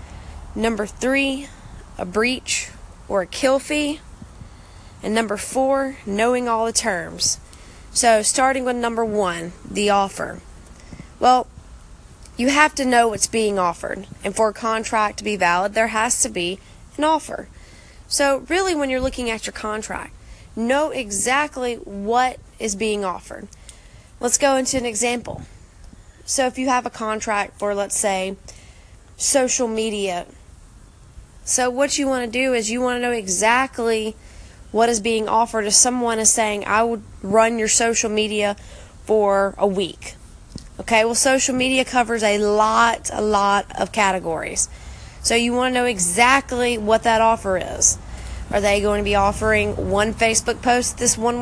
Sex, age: female, 20-39